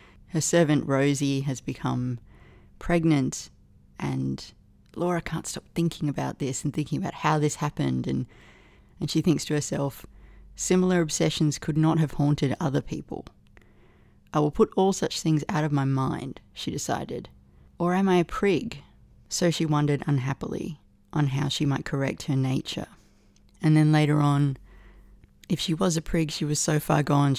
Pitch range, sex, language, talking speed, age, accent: 125-160 Hz, female, English, 165 wpm, 30-49, Australian